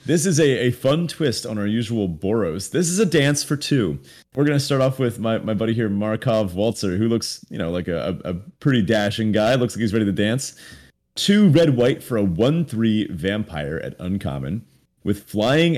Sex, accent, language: male, American, English